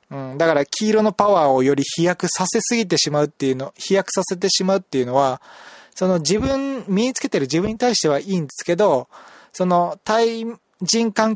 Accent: native